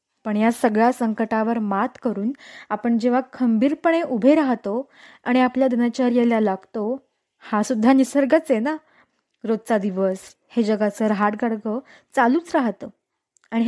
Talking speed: 125 wpm